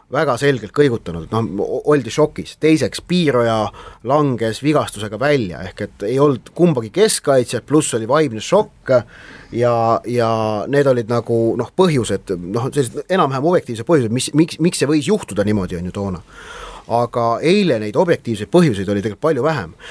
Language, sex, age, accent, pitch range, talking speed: English, male, 30-49, Finnish, 115-160 Hz, 155 wpm